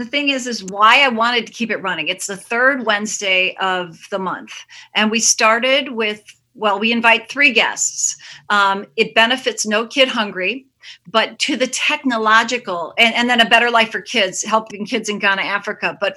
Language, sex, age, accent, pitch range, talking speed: English, female, 40-59, American, 210-255 Hz, 190 wpm